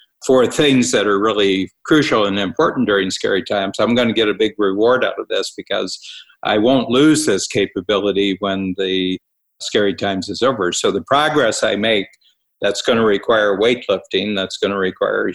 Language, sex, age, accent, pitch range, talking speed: English, male, 50-69, American, 95-115 Hz, 170 wpm